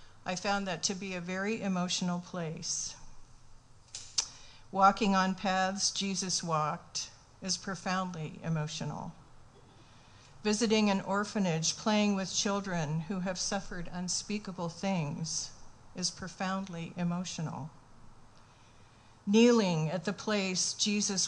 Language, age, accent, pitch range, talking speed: English, 50-69, American, 130-195 Hz, 100 wpm